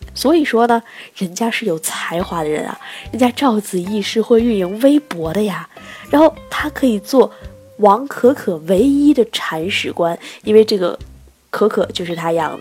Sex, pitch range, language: female, 180-230 Hz, Chinese